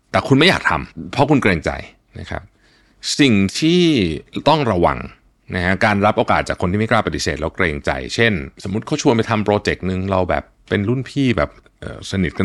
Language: Thai